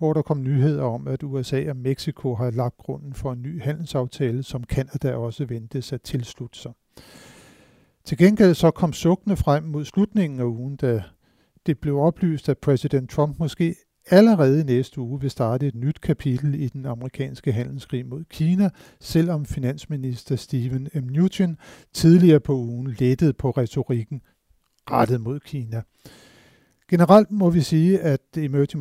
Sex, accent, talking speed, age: male, native, 155 wpm, 60-79